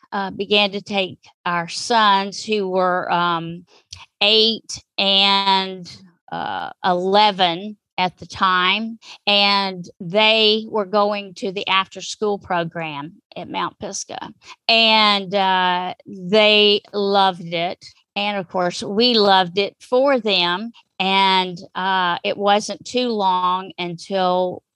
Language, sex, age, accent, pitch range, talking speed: English, female, 40-59, American, 180-215 Hz, 115 wpm